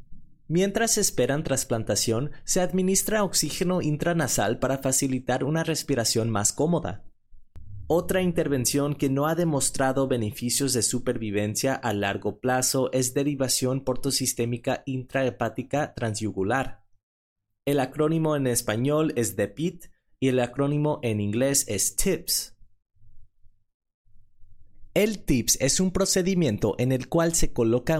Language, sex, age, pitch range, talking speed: Spanish, male, 30-49, 110-155 Hz, 115 wpm